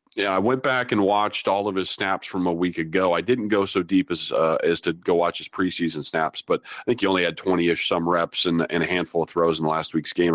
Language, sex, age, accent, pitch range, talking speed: English, male, 40-59, American, 85-110 Hz, 280 wpm